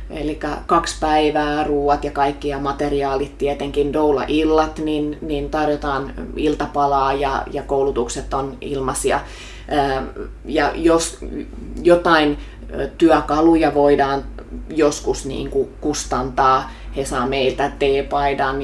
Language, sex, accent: Finnish, female, native